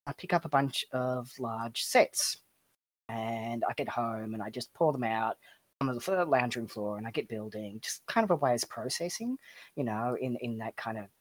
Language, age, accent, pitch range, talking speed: English, 30-49, Australian, 115-155 Hz, 230 wpm